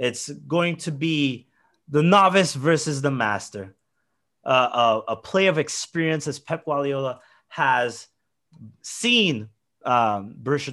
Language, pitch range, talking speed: English, 115-145 Hz, 125 wpm